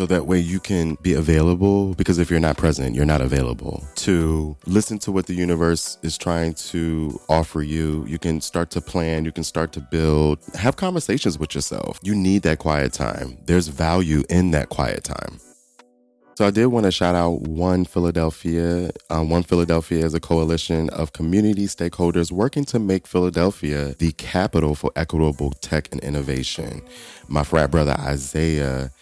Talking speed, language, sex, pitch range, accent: 175 wpm, English, male, 75-90 Hz, American